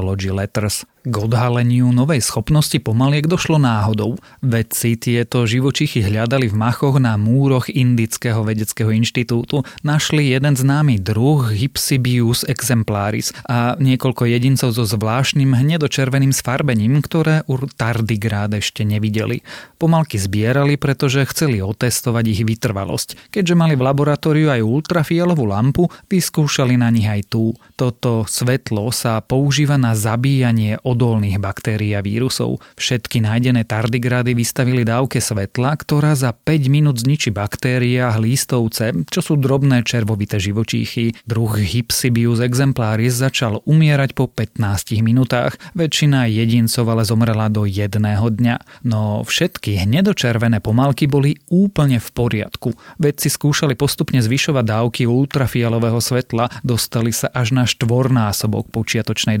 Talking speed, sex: 120 wpm, male